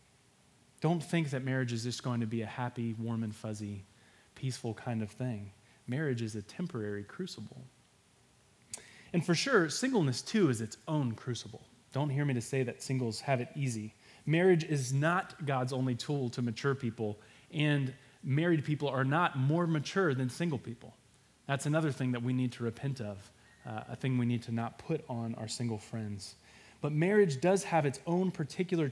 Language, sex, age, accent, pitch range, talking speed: English, male, 20-39, American, 120-165 Hz, 185 wpm